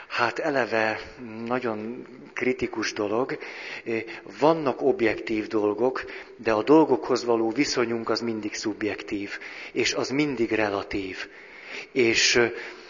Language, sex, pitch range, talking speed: Hungarian, male, 110-130 Hz, 100 wpm